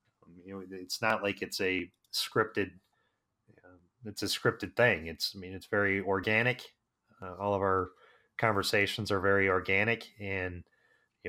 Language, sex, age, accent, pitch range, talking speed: English, male, 30-49, American, 95-110 Hz, 160 wpm